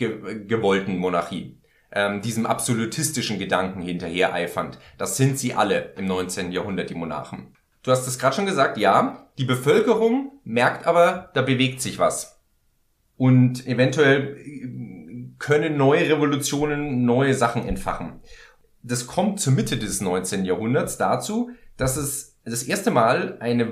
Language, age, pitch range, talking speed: German, 30-49, 115-170 Hz, 135 wpm